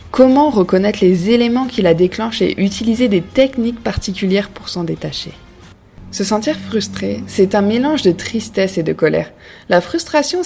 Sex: female